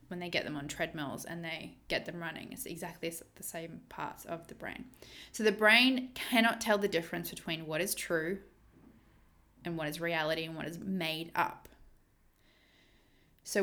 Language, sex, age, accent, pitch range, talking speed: English, female, 20-39, Australian, 165-195 Hz, 175 wpm